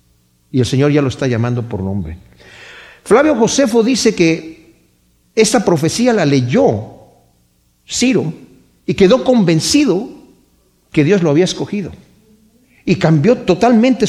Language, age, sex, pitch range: Spanish, 50-69, male, 140-215 Hz